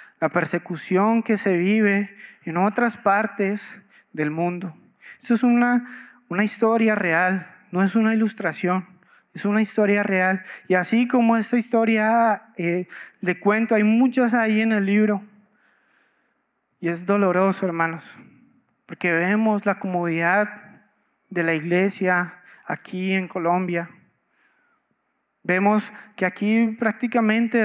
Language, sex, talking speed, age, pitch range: Spanish, male, 120 wpm, 20-39, 180-230 Hz